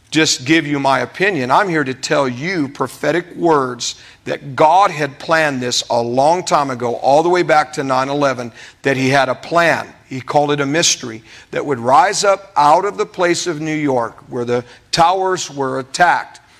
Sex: male